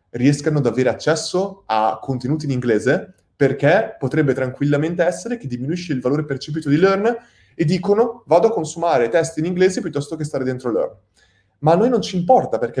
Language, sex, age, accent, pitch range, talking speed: Italian, male, 20-39, native, 115-155 Hz, 185 wpm